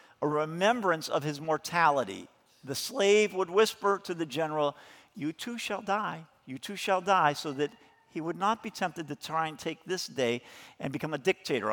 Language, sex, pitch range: English, male, 135-180 Hz